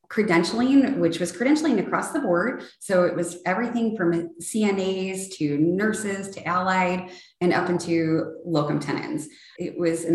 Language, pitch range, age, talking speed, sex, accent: English, 160-185 Hz, 20-39, 150 wpm, female, American